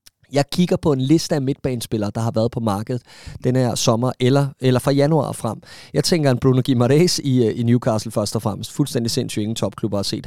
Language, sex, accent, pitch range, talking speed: Danish, male, native, 120-150 Hz, 220 wpm